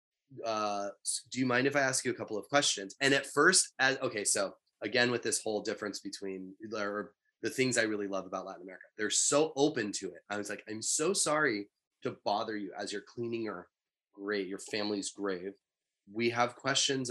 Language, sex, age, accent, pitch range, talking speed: English, male, 20-39, American, 100-130 Hz, 205 wpm